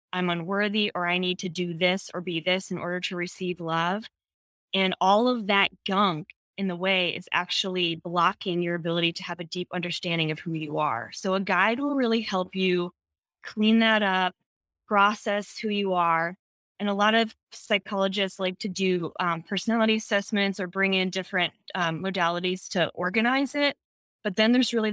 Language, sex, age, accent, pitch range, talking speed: English, female, 20-39, American, 175-200 Hz, 185 wpm